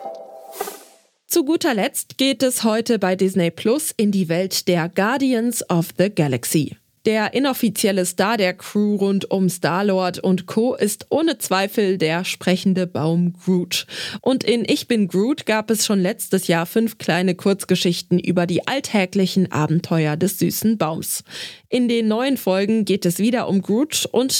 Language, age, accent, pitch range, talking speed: German, 20-39, German, 180-240 Hz, 155 wpm